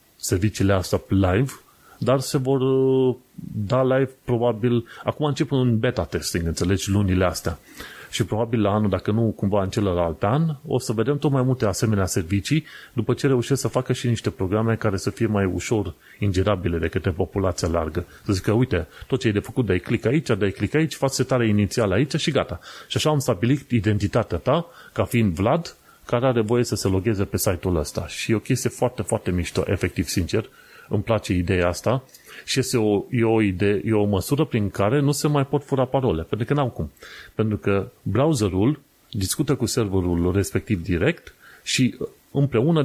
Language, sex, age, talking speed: Romanian, male, 30-49, 190 wpm